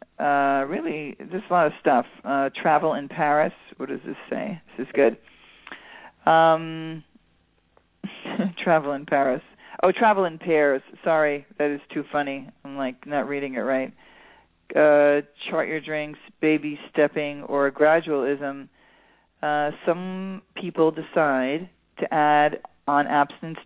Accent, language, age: American, English, 40-59